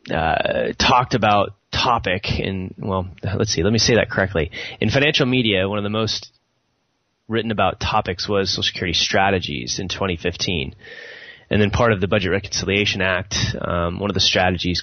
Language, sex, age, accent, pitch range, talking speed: English, male, 20-39, American, 95-115 Hz, 170 wpm